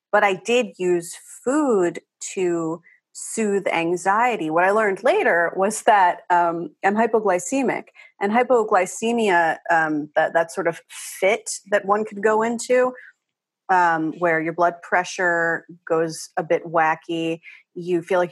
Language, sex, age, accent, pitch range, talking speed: English, female, 30-49, American, 170-215 Hz, 140 wpm